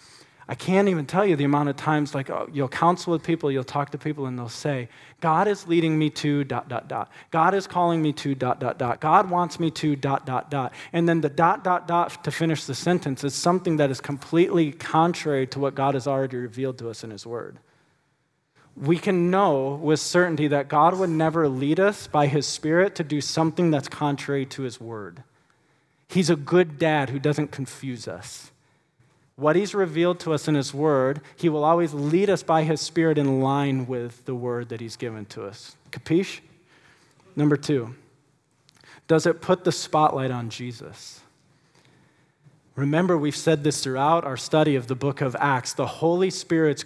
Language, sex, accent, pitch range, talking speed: English, male, American, 135-165 Hz, 195 wpm